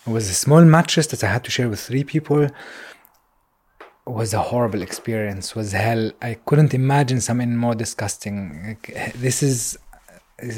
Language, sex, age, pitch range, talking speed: German, male, 20-39, 105-125 Hz, 175 wpm